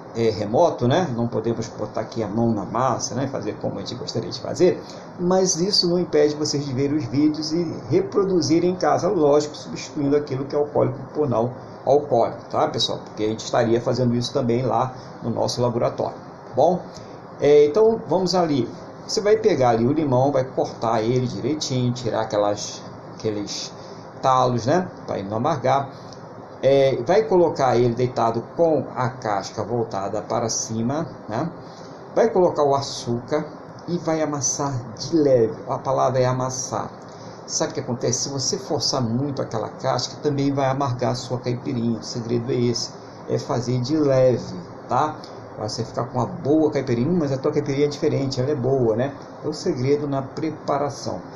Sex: male